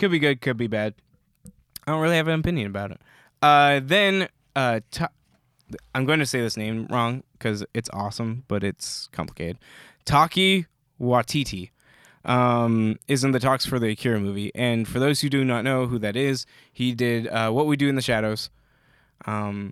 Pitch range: 115-140 Hz